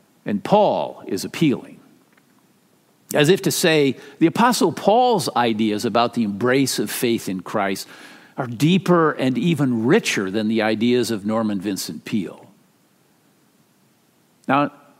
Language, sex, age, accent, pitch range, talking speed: English, male, 50-69, American, 120-175 Hz, 130 wpm